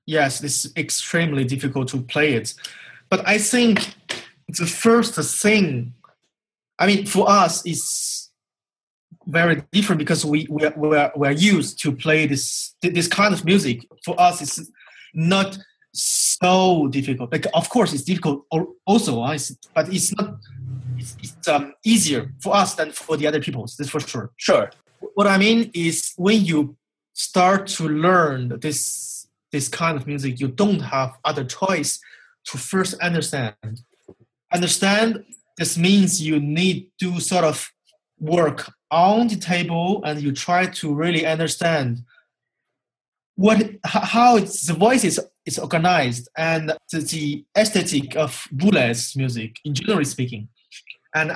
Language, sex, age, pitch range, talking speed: English, male, 30-49, 140-190 Hz, 145 wpm